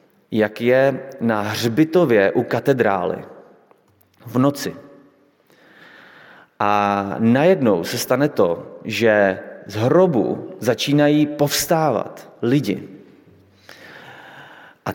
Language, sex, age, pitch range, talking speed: Slovak, male, 30-49, 120-170 Hz, 80 wpm